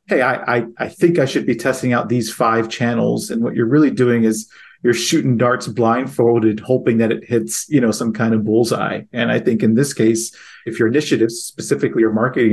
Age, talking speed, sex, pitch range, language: 40-59, 210 wpm, male, 110-125 Hz, English